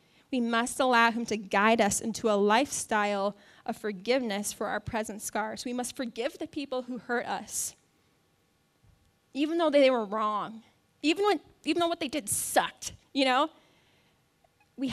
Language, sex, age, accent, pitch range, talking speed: English, female, 10-29, American, 220-265 Hz, 160 wpm